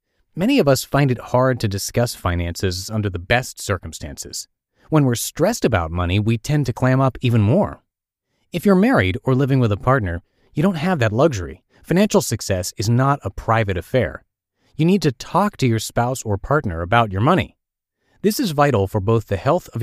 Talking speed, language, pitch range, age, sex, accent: 195 wpm, English, 95-135 Hz, 30-49, male, American